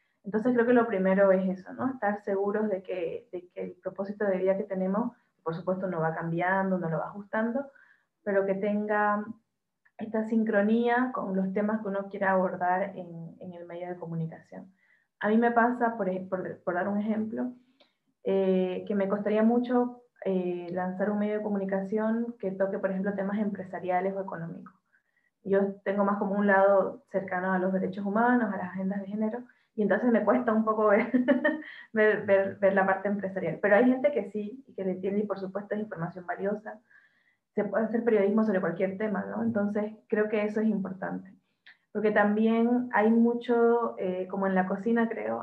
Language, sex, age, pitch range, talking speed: Spanish, female, 20-39, 190-220 Hz, 190 wpm